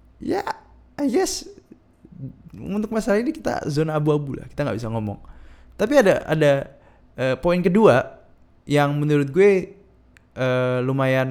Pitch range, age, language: 115-160 Hz, 20-39, Indonesian